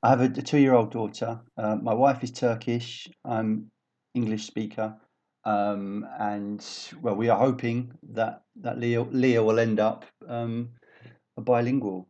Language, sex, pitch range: English, male, 100-125 Hz